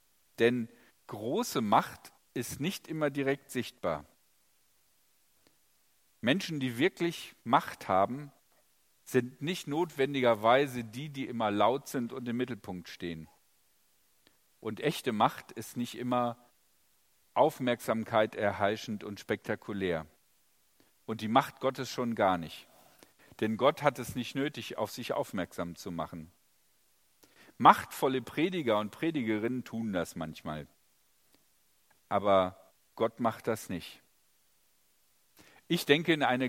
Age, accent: 50-69, German